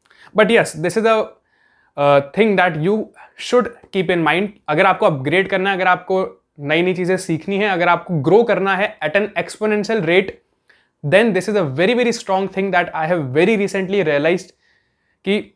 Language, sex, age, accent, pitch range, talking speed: Hindi, male, 20-39, native, 165-205 Hz, 170 wpm